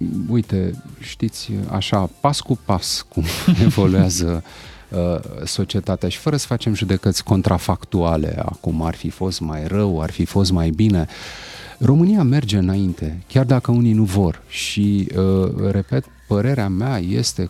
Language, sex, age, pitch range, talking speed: Romanian, male, 30-49, 95-120 Hz, 135 wpm